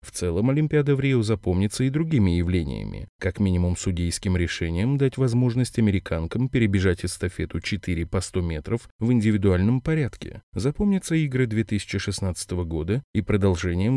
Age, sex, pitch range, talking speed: 20-39, male, 90-120 Hz, 135 wpm